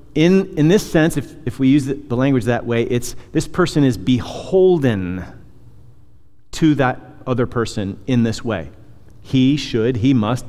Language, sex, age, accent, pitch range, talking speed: English, male, 40-59, American, 105-135 Hz, 160 wpm